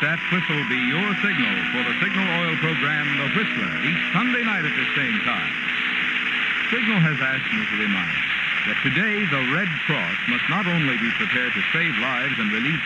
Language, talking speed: English, 185 wpm